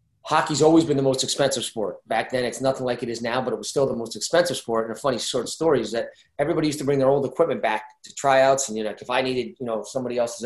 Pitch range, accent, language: 115-135 Hz, American, English